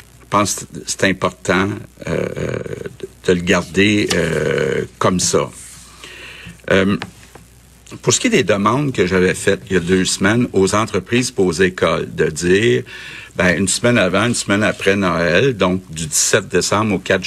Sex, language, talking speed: male, French, 165 wpm